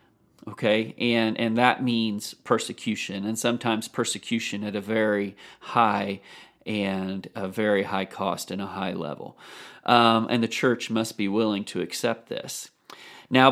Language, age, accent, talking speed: English, 40-59, American, 145 wpm